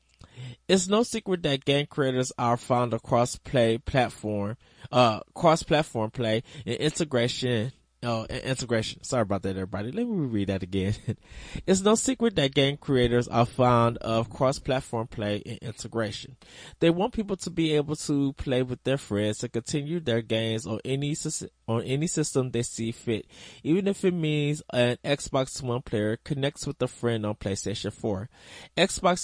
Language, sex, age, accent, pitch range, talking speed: English, male, 20-39, American, 115-155 Hz, 170 wpm